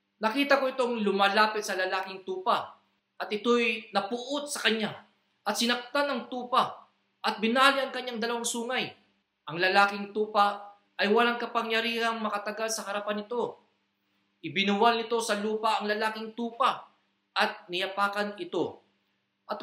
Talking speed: 130 wpm